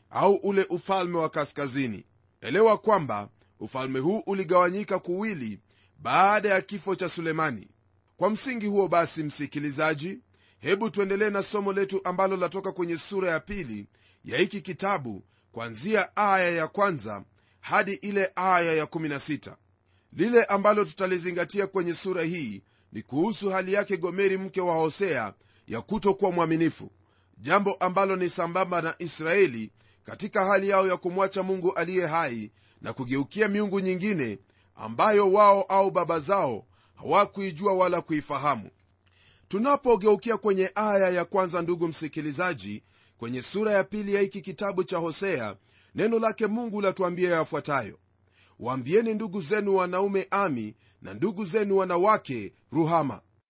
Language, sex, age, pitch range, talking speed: Swahili, male, 30-49, 130-200 Hz, 135 wpm